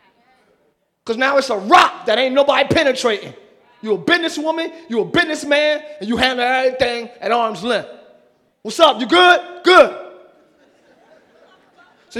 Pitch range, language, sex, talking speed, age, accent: 235-305 Hz, English, male, 140 wpm, 30-49, American